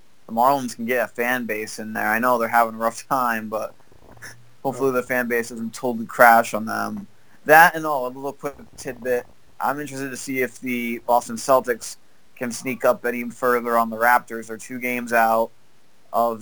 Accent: American